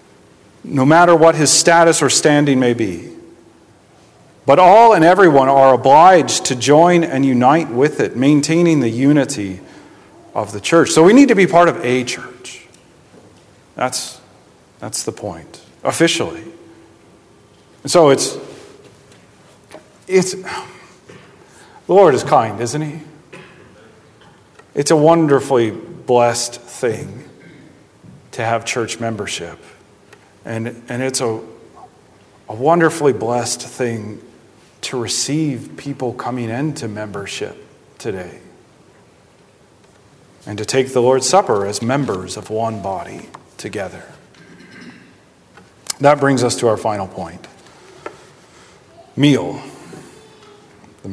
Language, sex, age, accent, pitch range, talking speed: English, male, 40-59, American, 120-155 Hz, 115 wpm